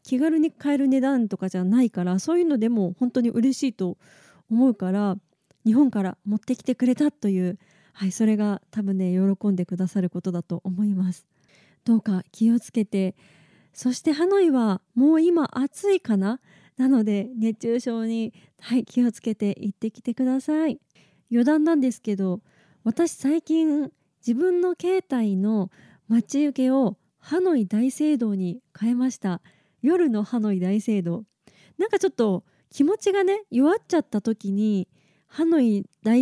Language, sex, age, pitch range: Japanese, female, 20-39, 190-260 Hz